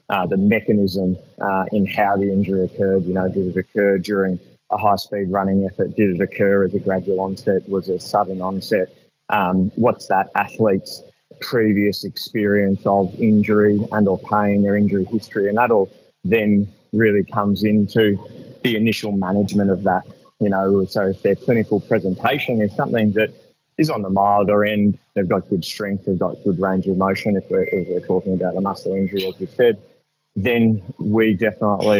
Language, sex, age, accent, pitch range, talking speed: English, male, 20-39, Australian, 95-105 Hz, 180 wpm